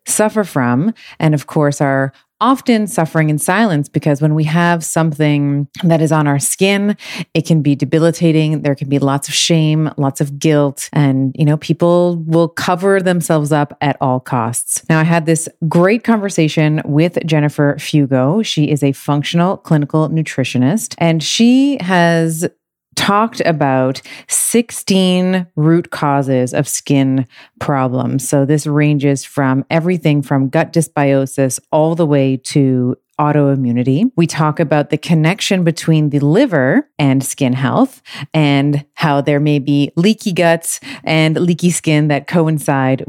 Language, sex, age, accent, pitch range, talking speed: English, female, 30-49, American, 140-170 Hz, 150 wpm